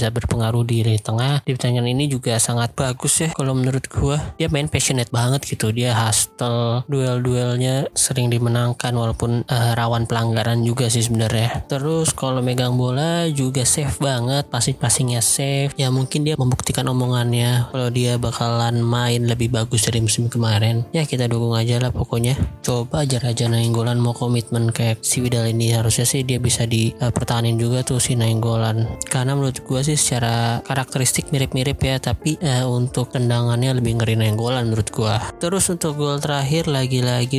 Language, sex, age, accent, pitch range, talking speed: Indonesian, male, 20-39, native, 115-135 Hz, 165 wpm